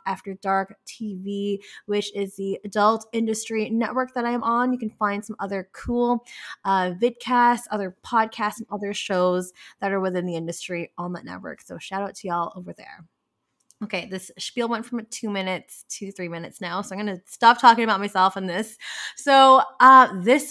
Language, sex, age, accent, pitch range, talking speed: English, female, 20-39, American, 200-255 Hz, 185 wpm